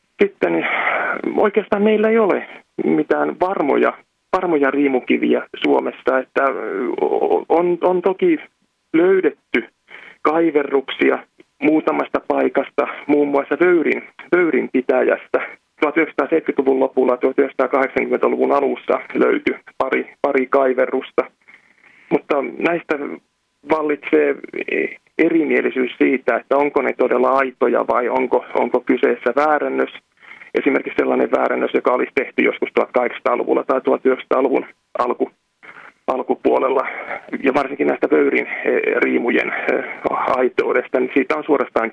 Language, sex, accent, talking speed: Finnish, male, native, 95 wpm